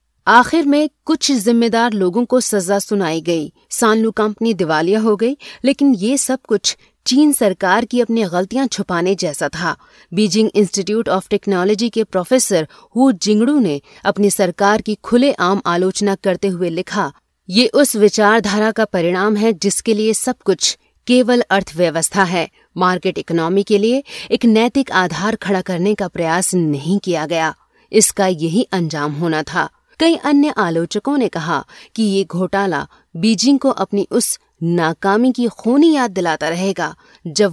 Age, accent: 30-49, native